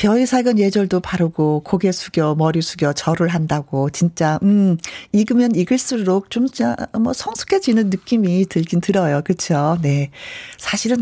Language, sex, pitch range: Korean, female, 180-260 Hz